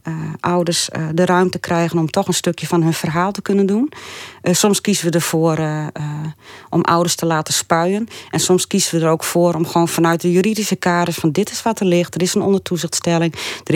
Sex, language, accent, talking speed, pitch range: female, Dutch, Dutch, 225 wpm, 160-190 Hz